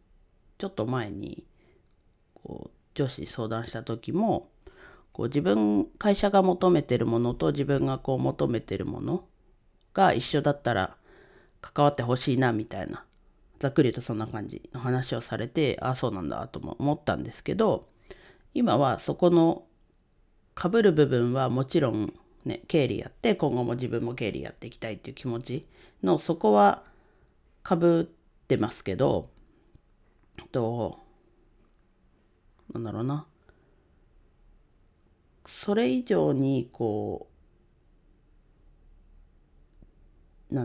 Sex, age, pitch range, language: female, 40-59, 105-140 Hz, Japanese